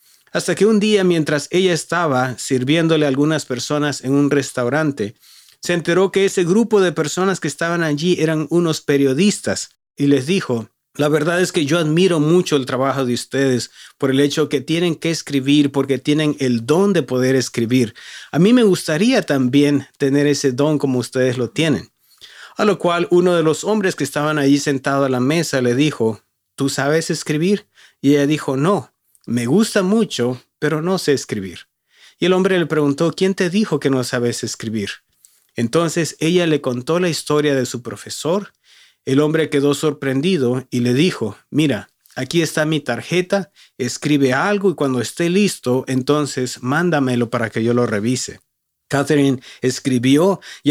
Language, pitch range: English, 130-170 Hz